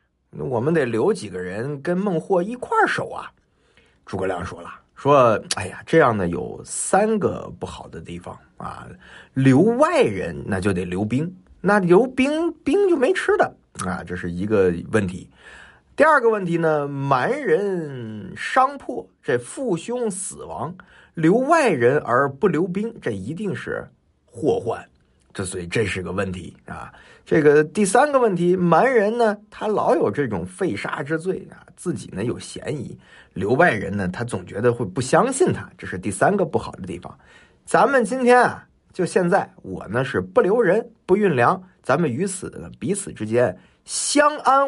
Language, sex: Chinese, male